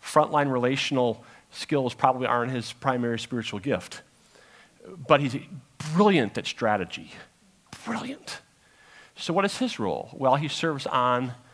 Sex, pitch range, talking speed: male, 120-155 Hz, 125 wpm